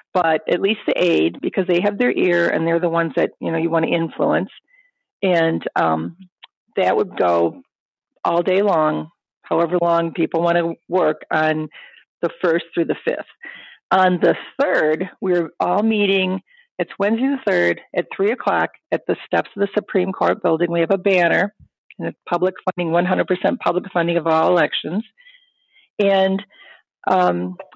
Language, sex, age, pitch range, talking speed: English, female, 40-59, 165-205 Hz, 170 wpm